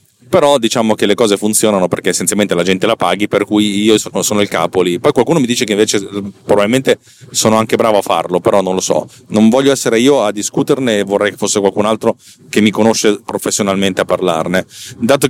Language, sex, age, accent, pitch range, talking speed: Italian, male, 40-59, native, 100-125 Hz, 210 wpm